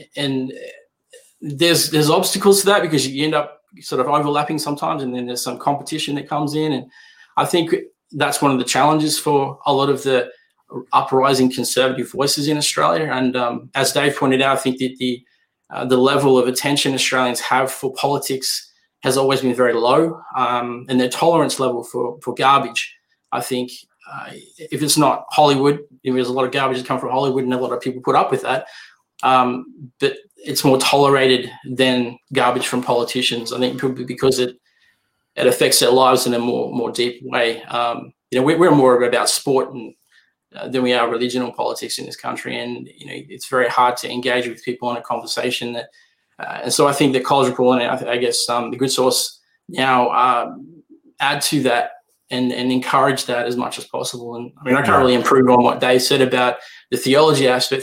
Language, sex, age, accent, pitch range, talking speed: English, male, 20-39, Australian, 125-145 Hz, 205 wpm